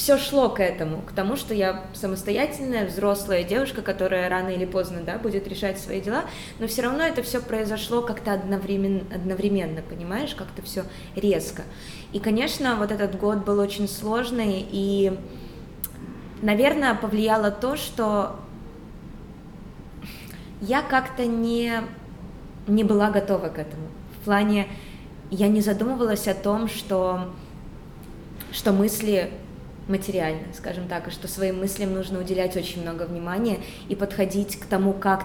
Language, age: Russian, 20-39